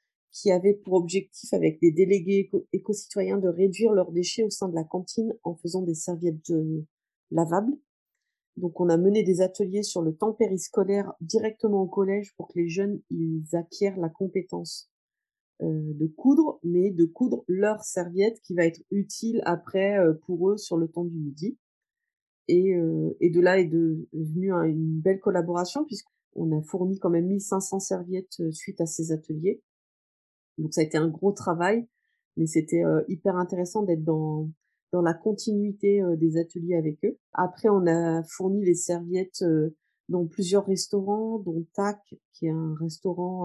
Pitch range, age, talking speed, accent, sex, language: 165-200 Hz, 30-49, 175 wpm, French, female, French